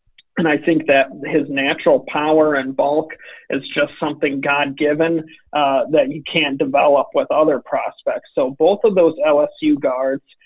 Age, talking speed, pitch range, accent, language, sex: 40-59, 150 wpm, 140-155 Hz, American, English, male